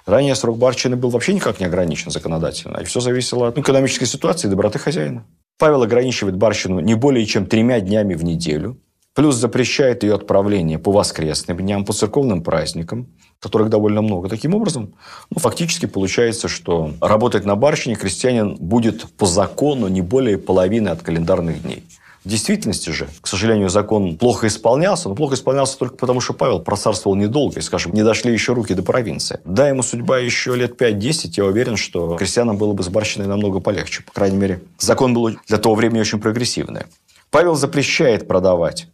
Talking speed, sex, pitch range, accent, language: 175 wpm, male, 95-125 Hz, native, Russian